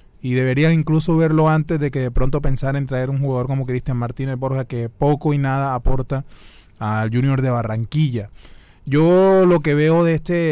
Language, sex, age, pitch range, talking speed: Spanish, male, 20-39, 125-150 Hz, 190 wpm